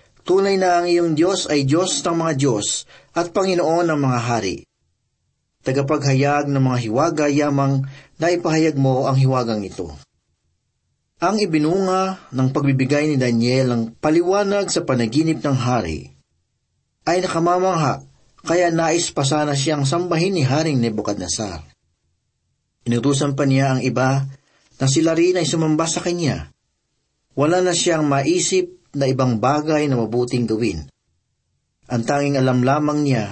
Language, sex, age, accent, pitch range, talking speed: Filipino, male, 40-59, native, 125-165 Hz, 135 wpm